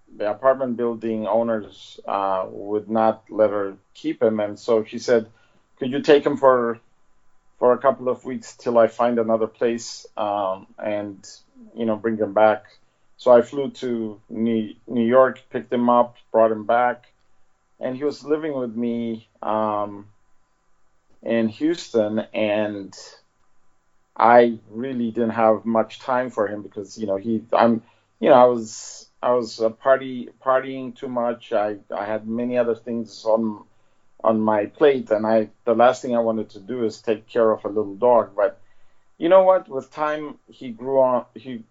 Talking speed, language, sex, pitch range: 175 wpm, English, male, 110-125 Hz